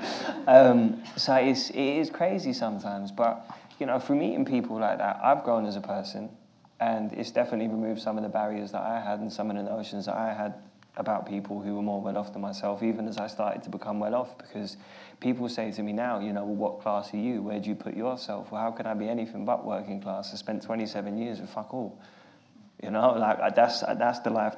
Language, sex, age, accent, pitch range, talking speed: English, male, 20-39, British, 100-115 Hz, 240 wpm